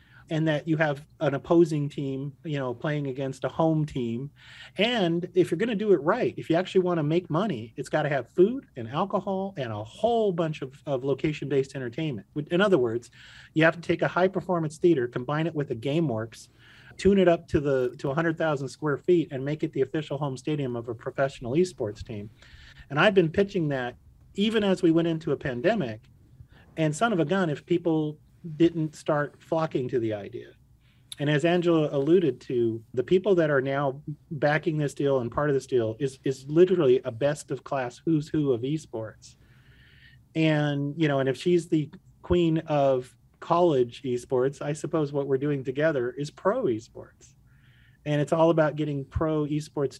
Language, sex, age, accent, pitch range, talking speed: English, male, 40-59, American, 130-165 Hz, 195 wpm